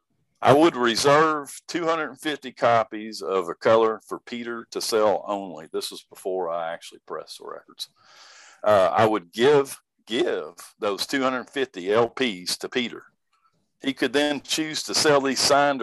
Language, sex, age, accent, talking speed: English, male, 50-69, American, 150 wpm